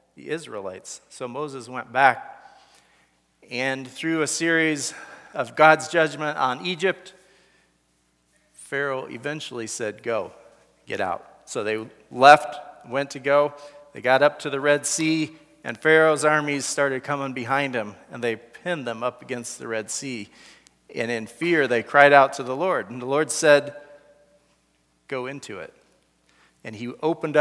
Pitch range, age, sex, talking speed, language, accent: 120-150 Hz, 40-59, male, 150 wpm, English, American